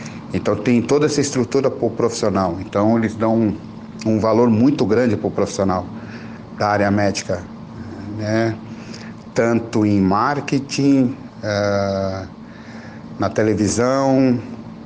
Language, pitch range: Portuguese, 100-120 Hz